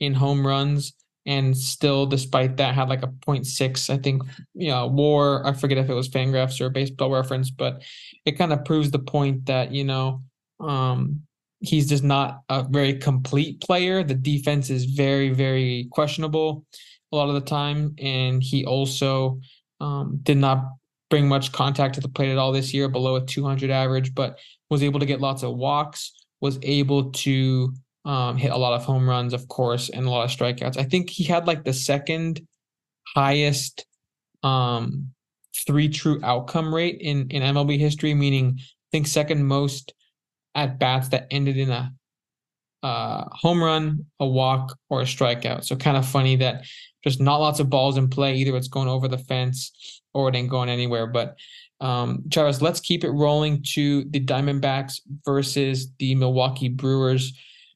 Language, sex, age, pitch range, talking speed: English, male, 20-39, 130-145 Hz, 180 wpm